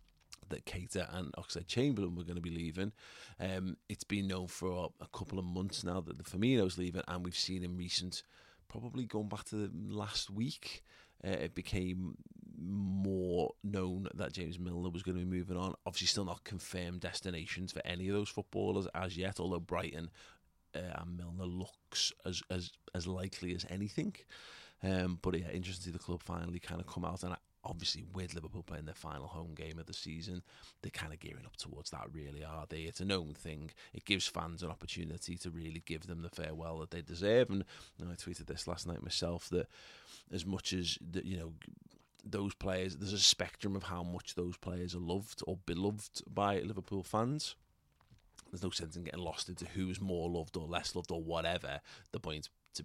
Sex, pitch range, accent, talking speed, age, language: male, 85-95 Hz, British, 205 wpm, 30-49, English